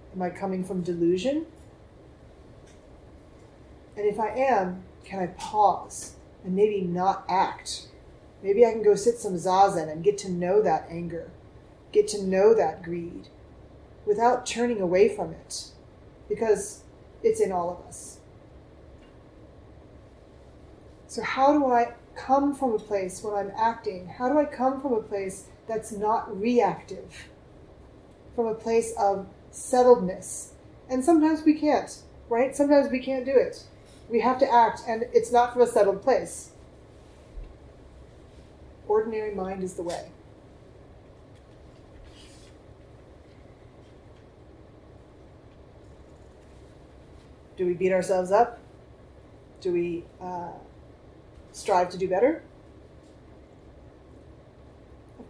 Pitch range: 185-255 Hz